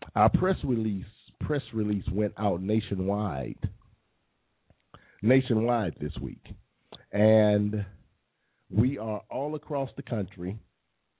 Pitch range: 100-120 Hz